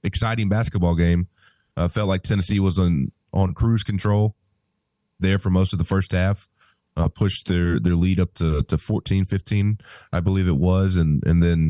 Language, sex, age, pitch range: English, male, 30-49, 85-100 Hz